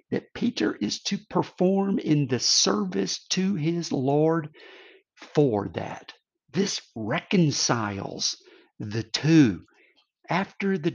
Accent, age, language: American, 50-69, English